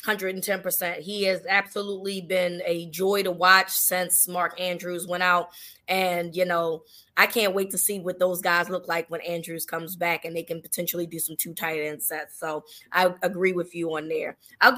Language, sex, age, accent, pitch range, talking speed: English, female, 20-39, American, 170-200 Hz, 210 wpm